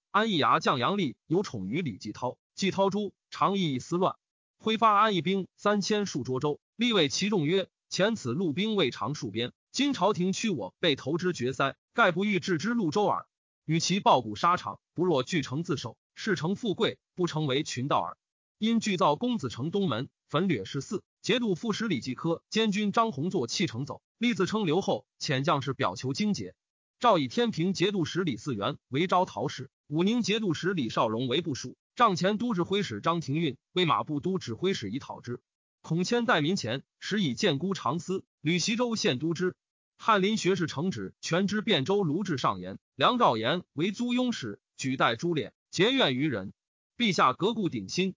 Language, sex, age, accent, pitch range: Chinese, male, 30-49, native, 155-210 Hz